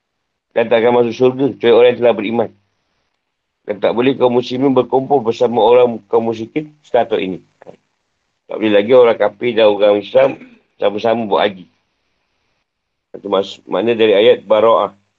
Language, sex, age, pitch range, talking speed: Malay, male, 50-69, 105-155 Hz, 150 wpm